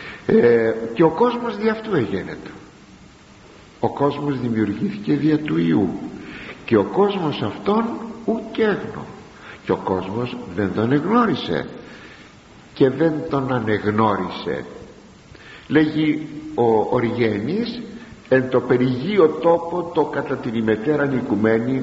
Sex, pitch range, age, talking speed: male, 105-145 Hz, 60-79, 110 wpm